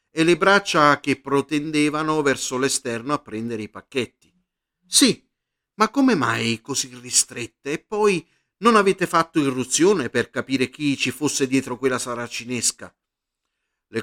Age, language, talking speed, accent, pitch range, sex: 50-69, Italian, 135 wpm, native, 115-160 Hz, male